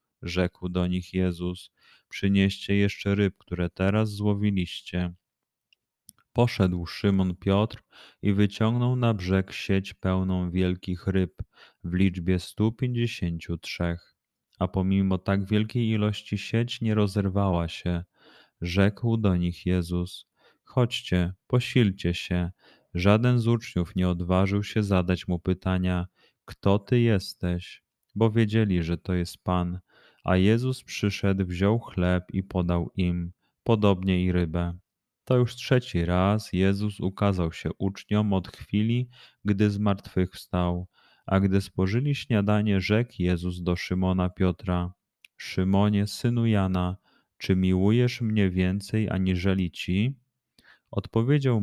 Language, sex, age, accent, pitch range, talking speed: Polish, male, 30-49, native, 90-105 Hz, 120 wpm